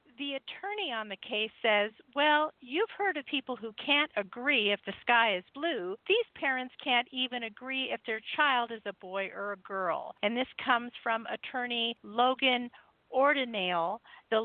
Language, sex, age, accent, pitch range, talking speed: English, female, 50-69, American, 215-275 Hz, 170 wpm